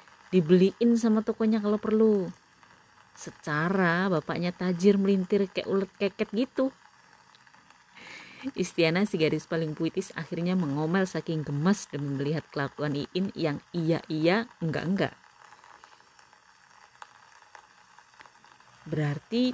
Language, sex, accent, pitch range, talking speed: Indonesian, female, native, 155-210 Hz, 90 wpm